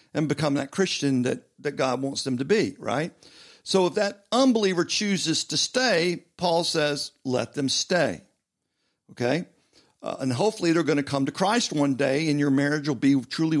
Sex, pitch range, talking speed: male, 140-200 Hz, 185 wpm